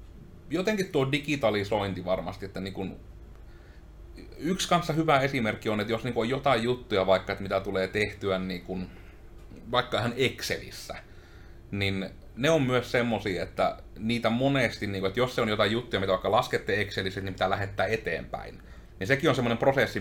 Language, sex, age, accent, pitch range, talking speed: Finnish, male, 30-49, native, 95-115 Hz, 170 wpm